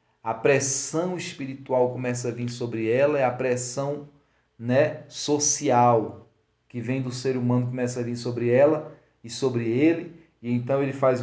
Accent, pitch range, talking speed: Brazilian, 115-135 Hz, 160 wpm